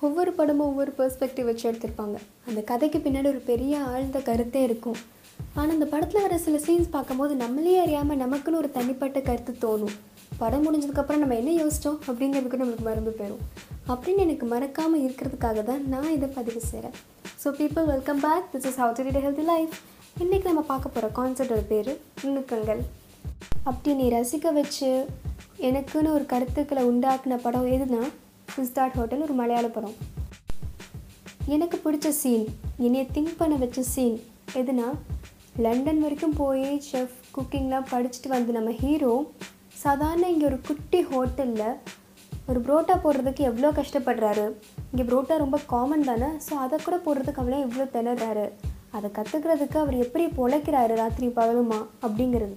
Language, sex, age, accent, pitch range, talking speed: Tamil, female, 20-39, native, 245-300 Hz, 145 wpm